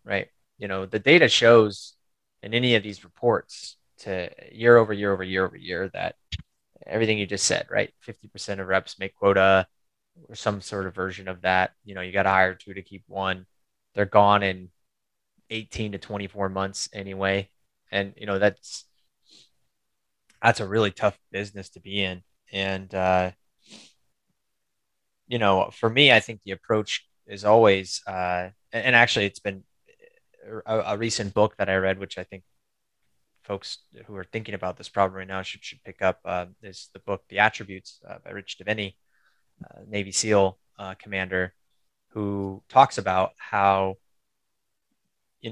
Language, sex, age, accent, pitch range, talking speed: English, male, 20-39, American, 95-110 Hz, 165 wpm